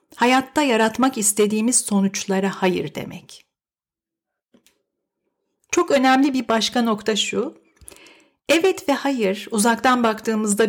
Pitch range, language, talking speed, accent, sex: 195-265 Hz, Turkish, 95 wpm, native, female